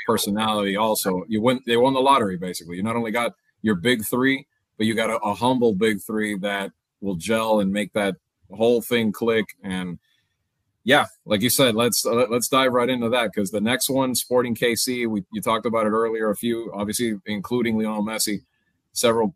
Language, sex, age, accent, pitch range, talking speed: English, male, 30-49, American, 110-145 Hz, 200 wpm